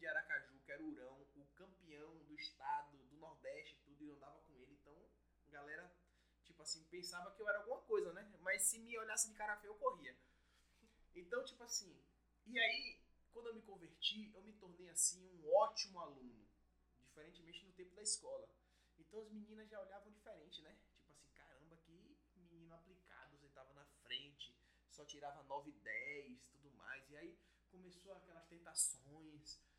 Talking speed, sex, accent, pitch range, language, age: 180 wpm, male, Brazilian, 140-220 Hz, Portuguese, 20-39